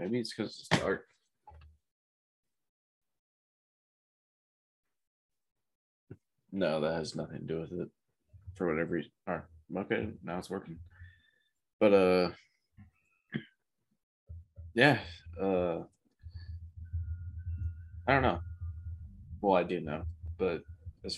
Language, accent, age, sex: English, American, 20-39, male